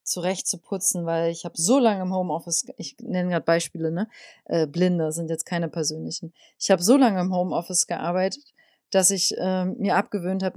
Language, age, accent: German, 30-49, German